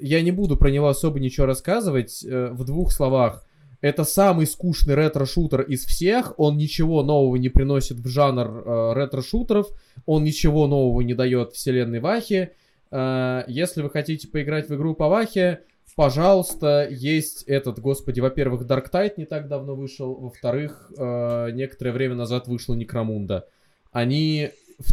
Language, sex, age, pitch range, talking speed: Russian, male, 20-39, 120-150 Hz, 140 wpm